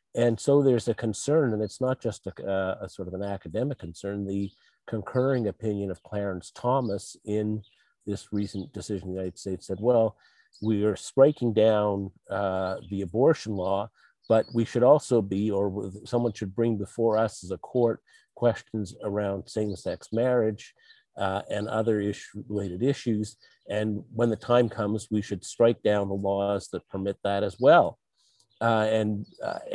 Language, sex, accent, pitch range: English, male, American, 100-115 Hz